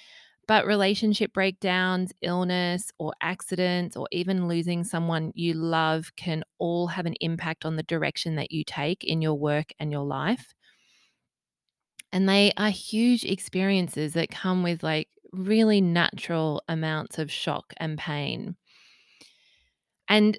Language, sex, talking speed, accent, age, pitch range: English, female, 135 wpm, Australian, 20-39, 155-185 Hz